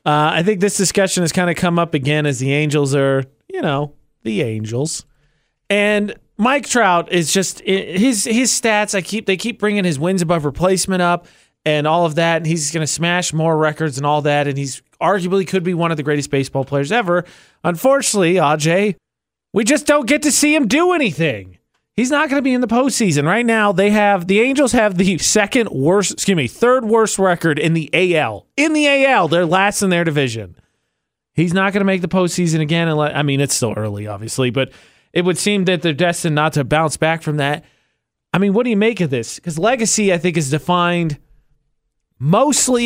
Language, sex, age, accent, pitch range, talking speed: English, male, 30-49, American, 150-210 Hz, 210 wpm